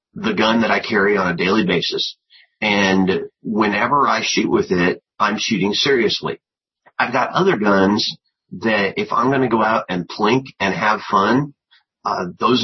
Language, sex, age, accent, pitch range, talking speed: English, male, 40-59, American, 95-120 Hz, 165 wpm